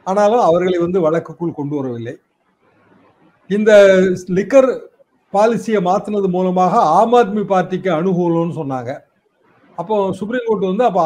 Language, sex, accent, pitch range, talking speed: Tamil, male, native, 175-230 Hz, 115 wpm